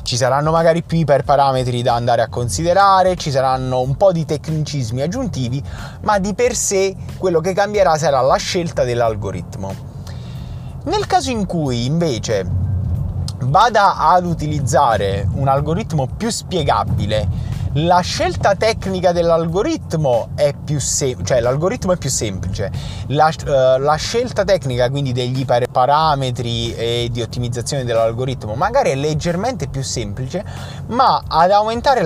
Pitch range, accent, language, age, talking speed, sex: 120-180 Hz, native, Italian, 20-39, 135 wpm, male